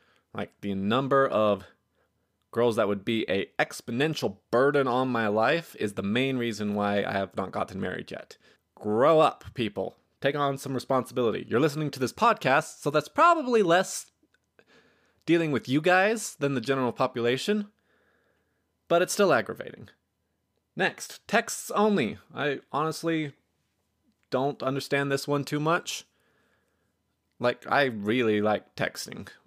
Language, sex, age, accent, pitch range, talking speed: English, male, 20-39, American, 105-145 Hz, 140 wpm